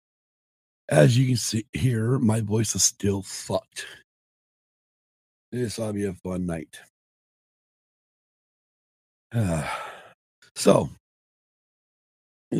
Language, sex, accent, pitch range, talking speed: English, male, American, 85-115 Hz, 95 wpm